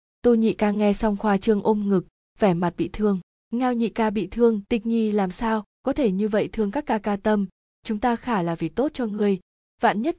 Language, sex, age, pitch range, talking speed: Vietnamese, female, 20-39, 185-225 Hz, 240 wpm